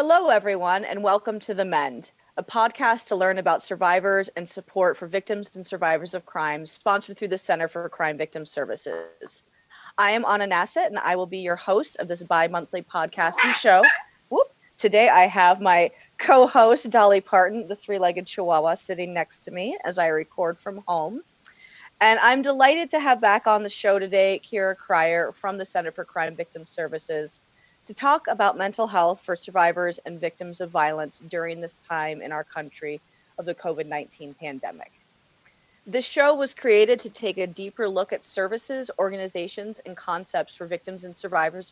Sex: female